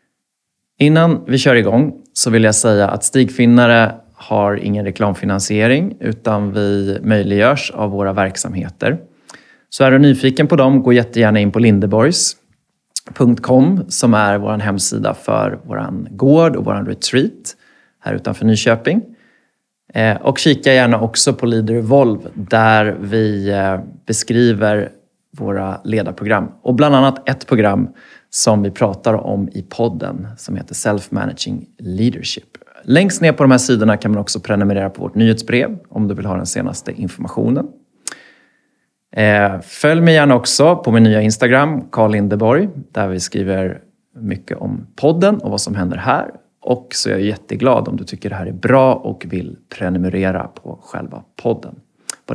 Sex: male